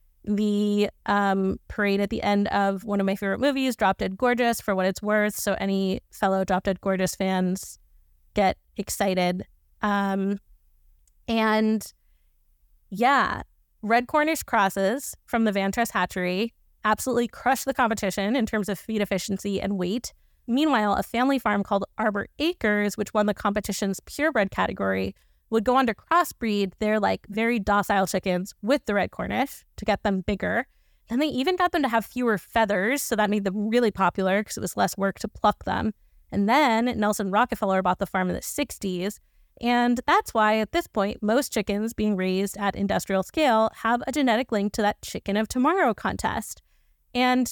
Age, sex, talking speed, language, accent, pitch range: 20-39, female, 175 wpm, English, American, 195-235 Hz